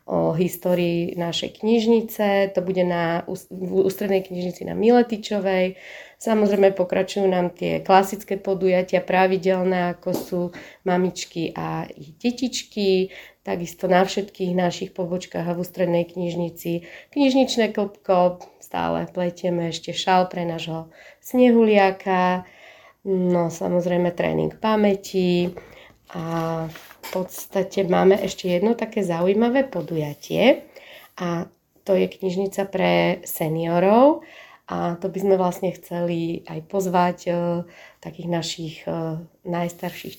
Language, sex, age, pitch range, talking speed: Slovak, female, 30-49, 170-190 Hz, 110 wpm